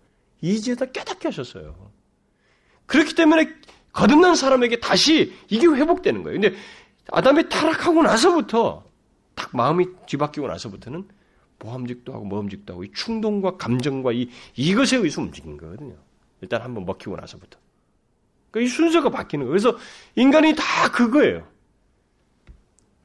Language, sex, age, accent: Korean, male, 40-59, native